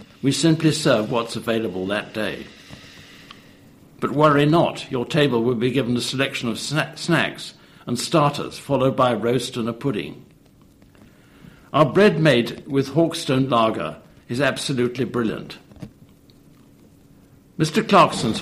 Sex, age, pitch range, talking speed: male, 60-79, 115-150 Hz, 130 wpm